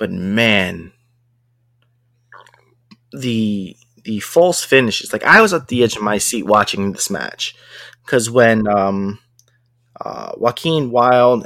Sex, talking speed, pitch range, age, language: male, 125 wpm, 105-120 Hz, 20-39, English